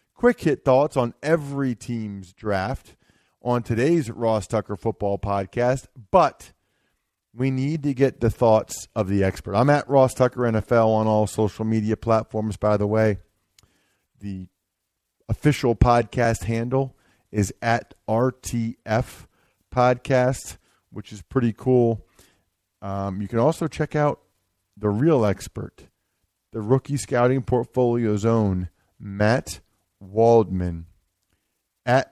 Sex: male